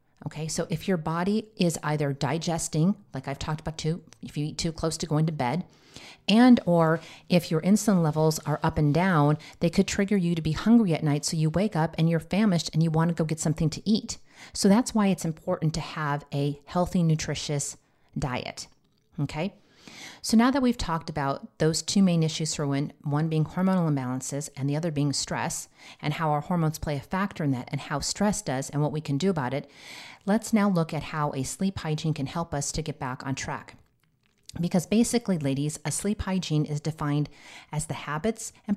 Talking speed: 215 wpm